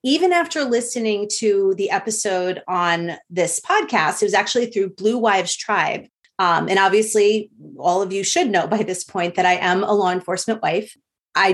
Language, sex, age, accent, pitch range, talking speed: English, female, 30-49, American, 185-235 Hz, 180 wpm